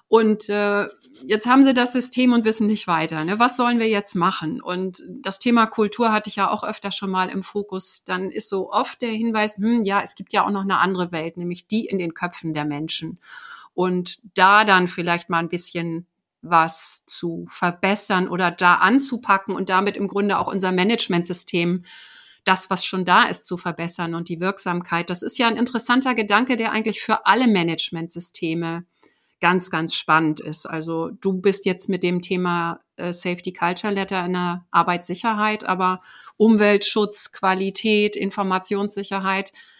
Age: 50-69